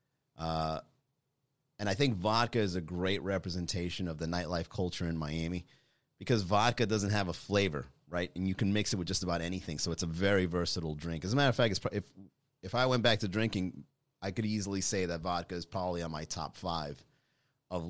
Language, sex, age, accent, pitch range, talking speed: English, male, 30-49, American, 90-125 Hz, 210 wpm